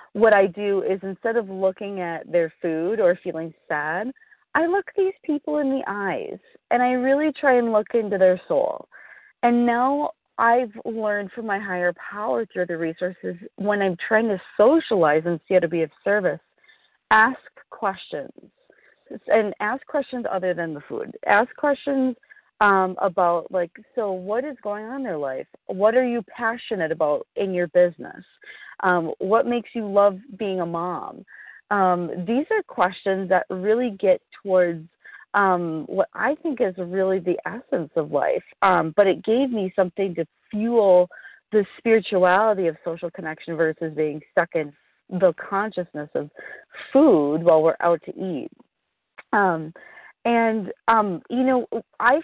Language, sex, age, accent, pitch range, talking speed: English, female, 30-49, American, 180-240 Hz, 160 wpm